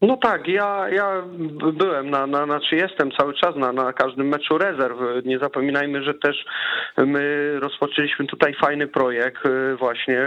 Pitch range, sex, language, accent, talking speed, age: 135-150 Hz, male, Polish, native, 150 wpm, 30-49